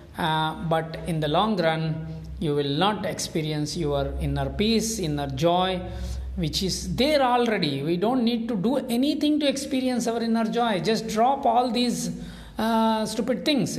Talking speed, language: 160 wpm, English